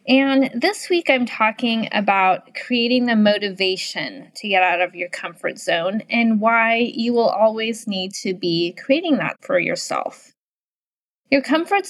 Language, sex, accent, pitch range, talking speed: English, female, American, 200-265 Hz, 150 wpm